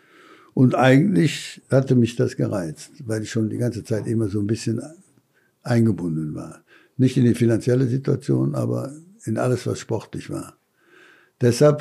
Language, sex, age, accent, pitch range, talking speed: German, male, 60-79, German, 115-135 Hz, 150 wpm